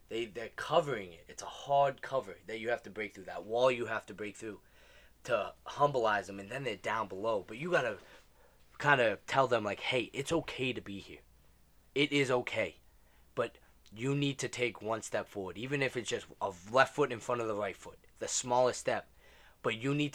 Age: 20-39